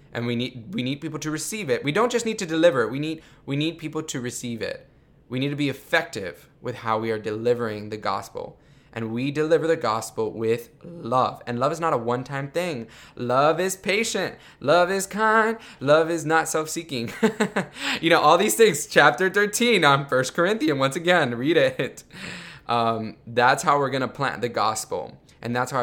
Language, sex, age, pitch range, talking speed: English, male, 10-29, 110-150 Hz, 195 wpm